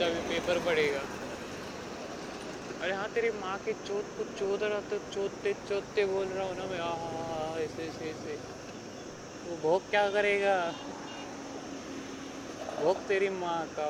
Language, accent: Marathi, native